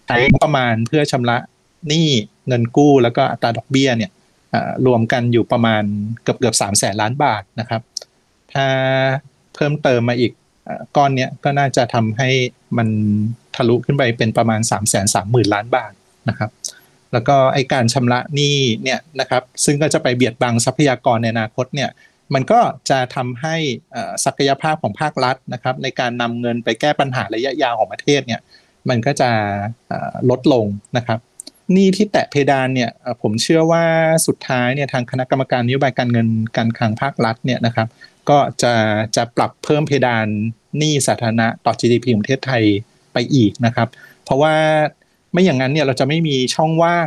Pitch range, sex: 115-140 Hz, male